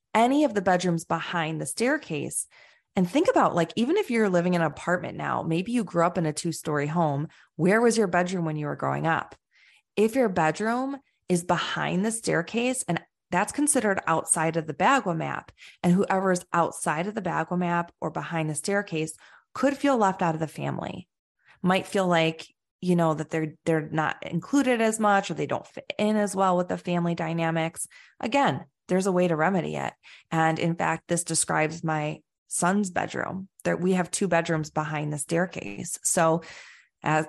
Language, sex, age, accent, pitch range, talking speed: English, female, 30-49, American, 160-195 Hz, 190 wpm